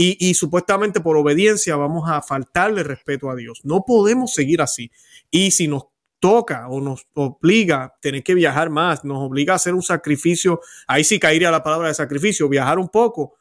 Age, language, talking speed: 30-49, Spanish, 190 wpm